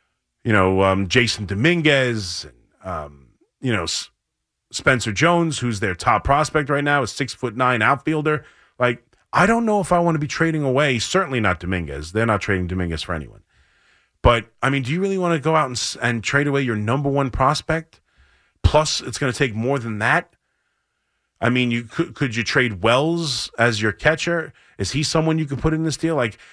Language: English